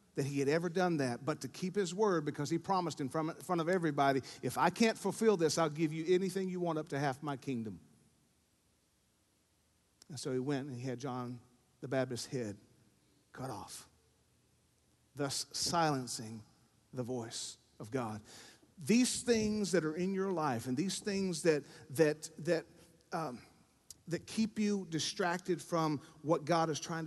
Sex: male